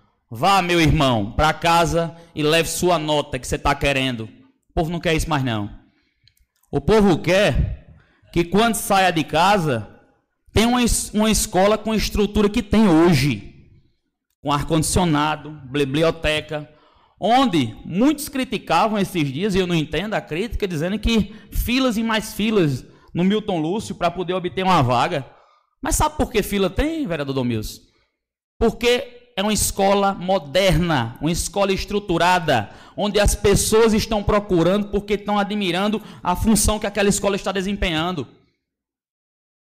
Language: Portuguese